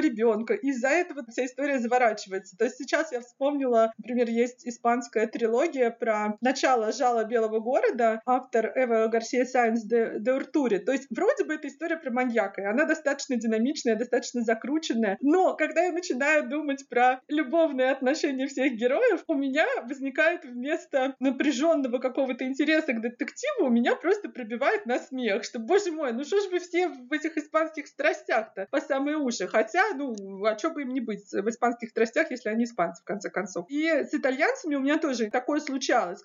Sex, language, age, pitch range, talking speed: female, Russian, 30-49, 235-305 Hz, 175 wpm